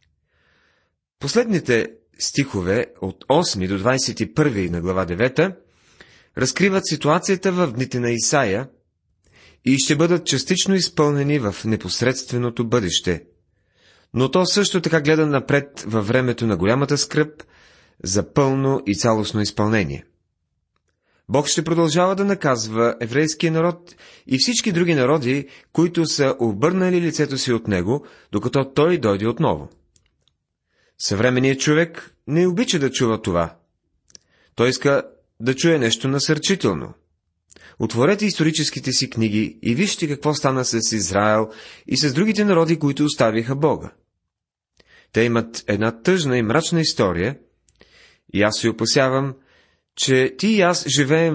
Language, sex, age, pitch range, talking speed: Bulgarian, male, 30-49, 110-155 Hz, 125 wpm